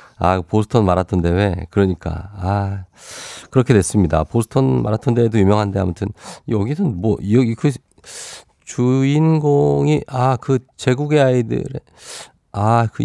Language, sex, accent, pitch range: Korean, male, native, 100-140 Hz